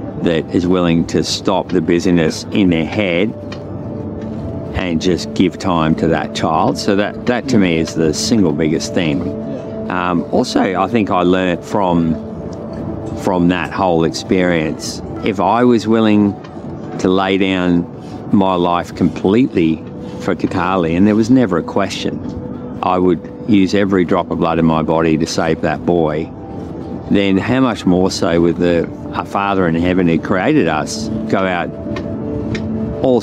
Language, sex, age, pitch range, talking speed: English, male, 50-69, 85-100 Hz, 155 wpm